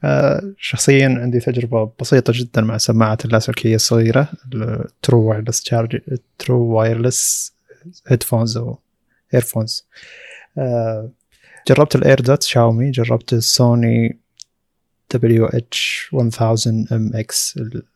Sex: male